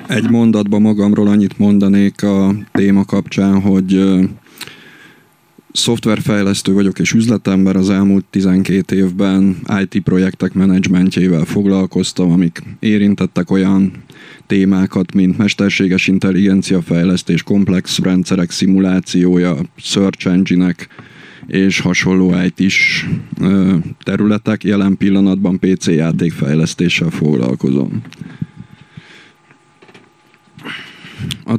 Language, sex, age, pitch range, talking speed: Hungarian, male, 20-39, 95-100 Hz, 85 wpm